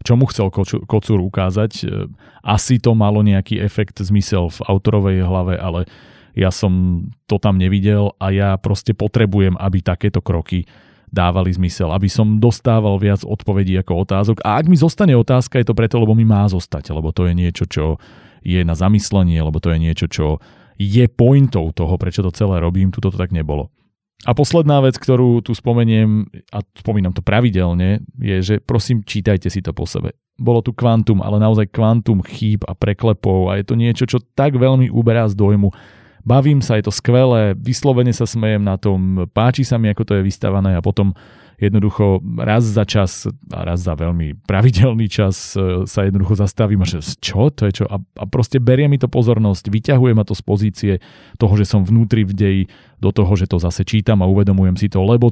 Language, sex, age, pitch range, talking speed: Slovak, male, 30-49, 95-115 Hz, 190 wpm